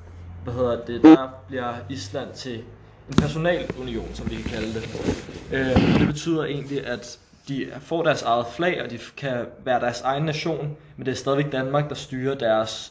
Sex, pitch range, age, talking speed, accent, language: male, 115-135 Hz, 20-39, 170 wpm, native, Danish